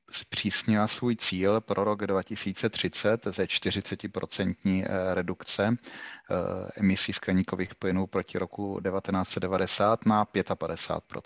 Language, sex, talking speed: Czech, male, 80 wpm